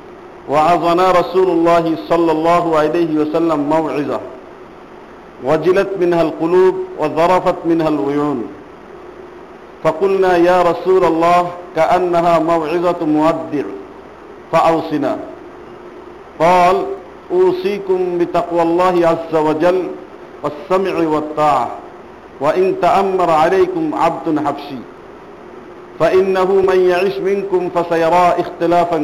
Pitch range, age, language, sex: 150-185 Hz, 50-69, Bengali, male